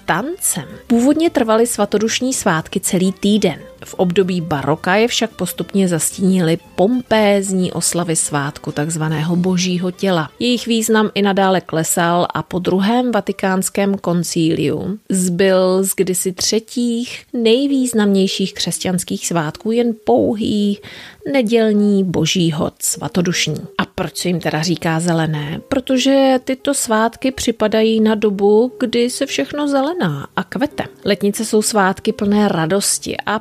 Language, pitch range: Czech, 170-220 Hz